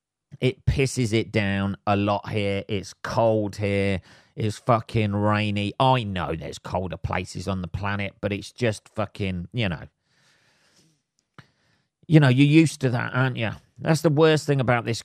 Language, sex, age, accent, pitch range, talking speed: English, male, 30-49, British, 105-140 Hz, 165 wpm